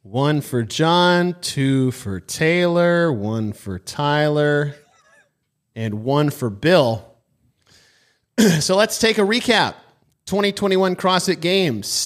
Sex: male